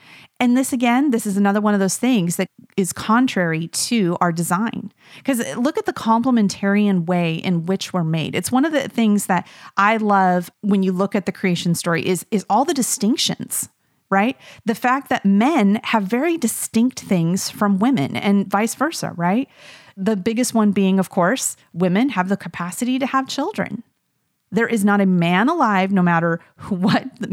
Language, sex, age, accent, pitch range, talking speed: English, female, 30-49, American, 185-245 Hz, 185 wpm